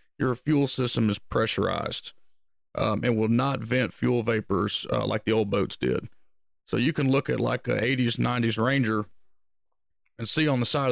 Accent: American